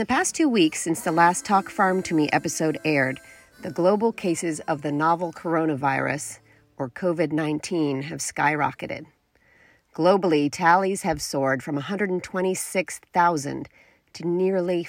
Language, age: English, 40-59